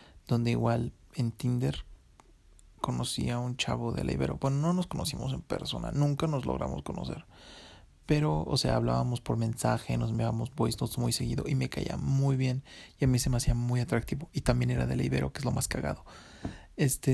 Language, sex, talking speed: English, male, 195 wpm